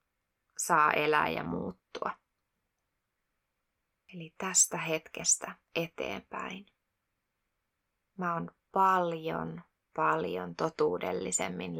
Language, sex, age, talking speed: Finnish, female, 20-39, 65 wpm